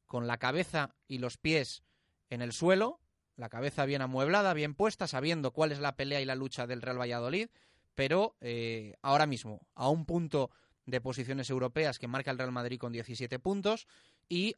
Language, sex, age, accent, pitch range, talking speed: Spanish, male, 30-49, Spanish, 125-180 Hz, 185 wpm